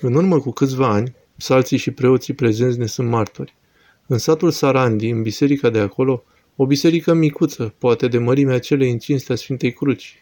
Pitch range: 120-145 Hz